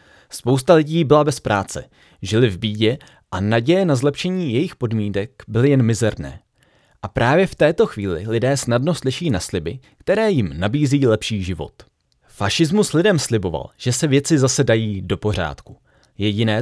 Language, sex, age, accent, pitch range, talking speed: Czech, male, 30-49, native, 110-155 Hz, 155 wpm